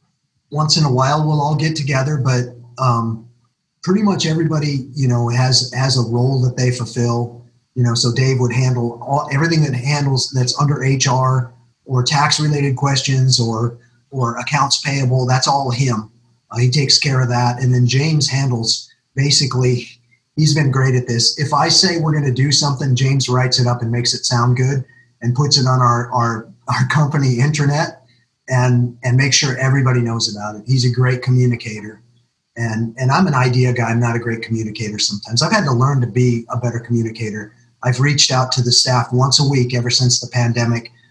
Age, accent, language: 30-49, American, English